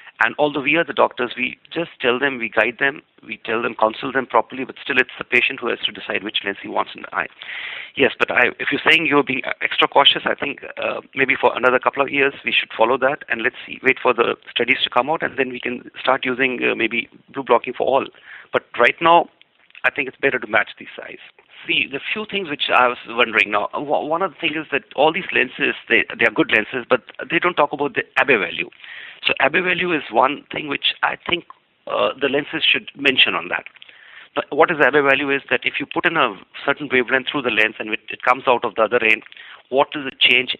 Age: 40-59